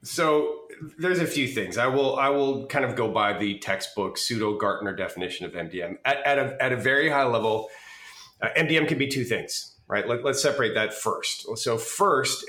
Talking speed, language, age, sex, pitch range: 200 wpm, English, 30-49, male, 110-140 Hz